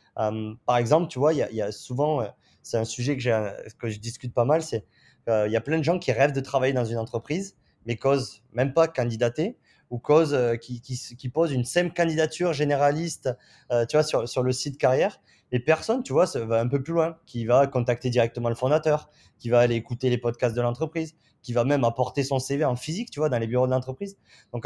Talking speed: 240 wpm